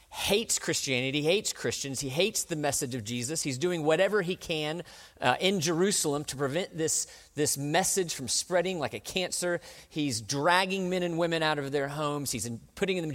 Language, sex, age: English, male, 40-59